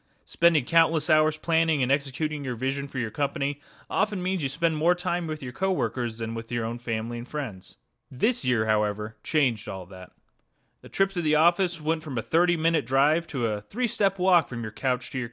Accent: American